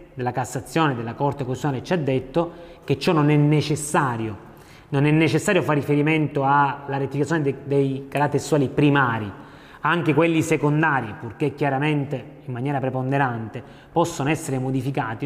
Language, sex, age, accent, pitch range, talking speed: Italian, male, 30-49, native, 135-170 Hz, 140 wpm